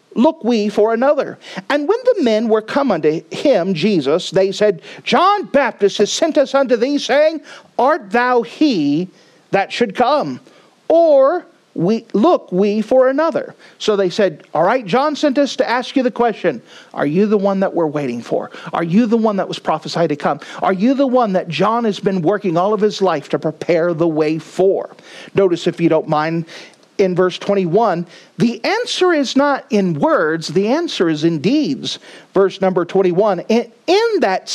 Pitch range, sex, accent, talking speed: 185-275 Hz, male, American, 185 wpm